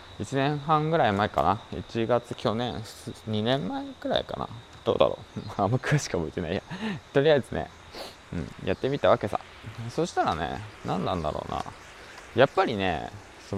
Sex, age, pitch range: male, 20-39, 85-125 Hz